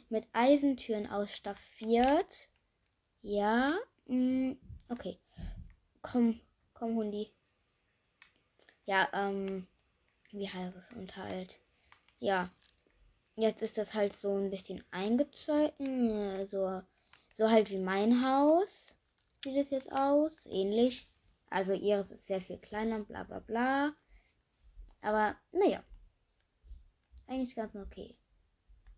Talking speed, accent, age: 100 wpm, German, 20-39